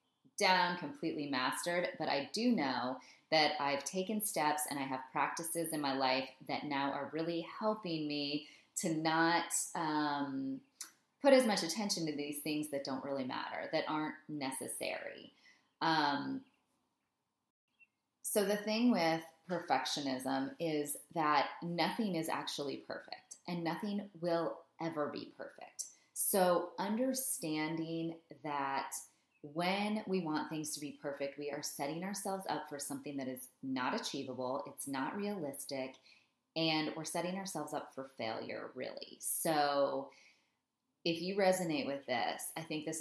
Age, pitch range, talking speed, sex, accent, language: 20-39, 140-175 Hz, 140 wpm, female, American, English